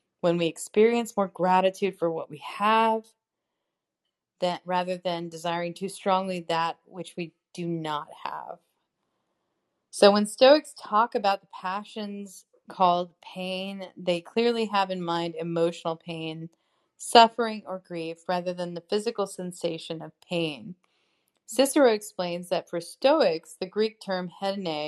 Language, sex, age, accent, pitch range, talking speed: English, female, 30-49, American, 170-210 Hz, 135 wpm